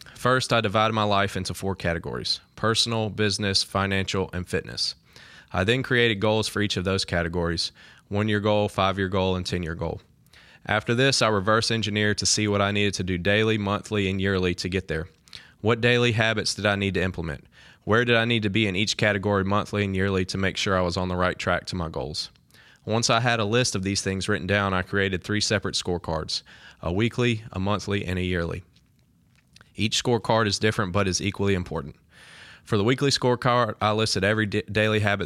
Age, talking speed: 20-39, 205 wpm